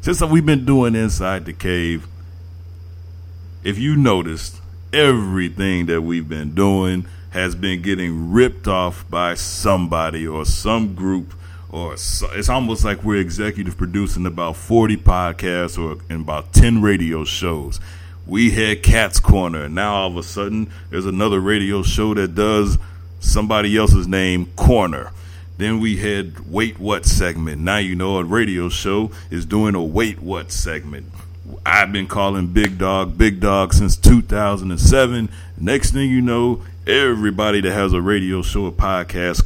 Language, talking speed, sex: English, 155 wpm, male